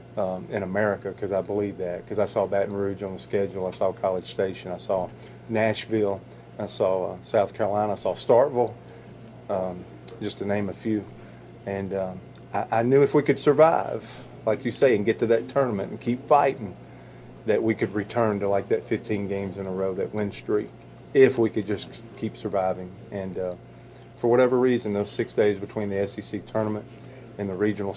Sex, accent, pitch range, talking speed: male, American, 95-115 Hz, 200 wpm